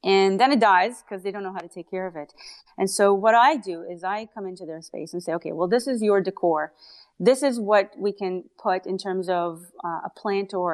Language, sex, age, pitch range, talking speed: English, female, 30-49, 175-230 Hz, 255 wpm